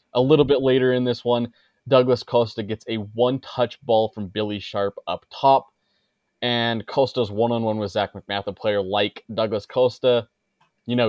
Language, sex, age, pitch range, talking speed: English, male, 20-39, 110-135 Hz, 170 wpm